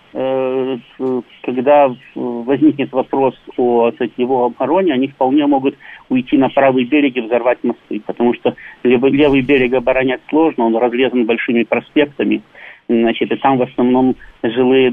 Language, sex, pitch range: Russian, male, 120-140 Hz